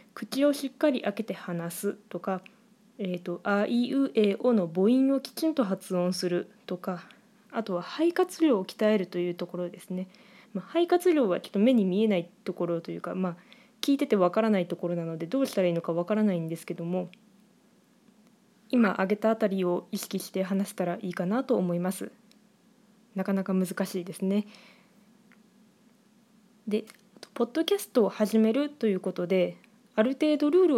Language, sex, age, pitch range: Japanese, female, 20-39, 190-250 Hz